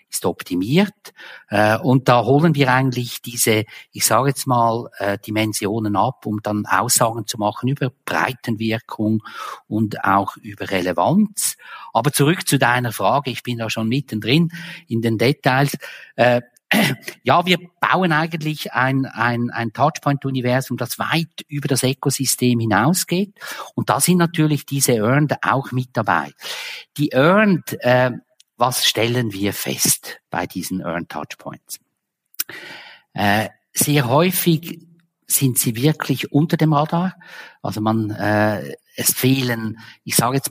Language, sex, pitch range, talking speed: German, male, 105-145 Hz, 130 wpm